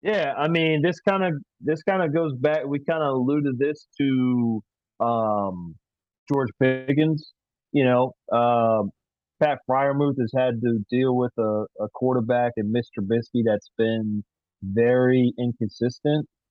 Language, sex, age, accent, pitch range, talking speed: English, male, 30-49, American, 110-130 Hz, 145 wpm